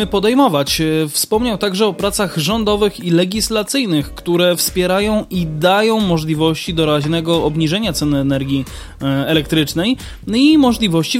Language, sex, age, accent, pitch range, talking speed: Polish, male, 20-39, native, 170-240 Hz, 105 wpm